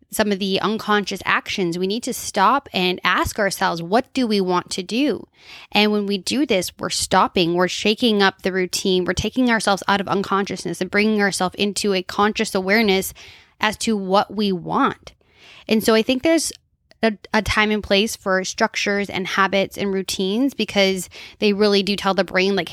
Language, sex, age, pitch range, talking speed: English, female, 10-29, 190-230 Hz, 190 wpm